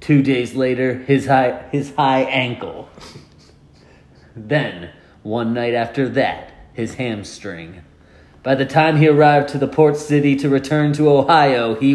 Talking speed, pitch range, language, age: 140 wpm, 110-150 Hz, English, 30-49